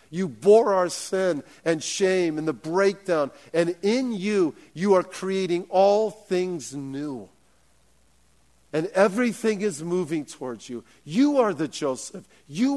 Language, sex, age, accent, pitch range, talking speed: English, male, 50-69, American, 130-175 Hz, 135 wpm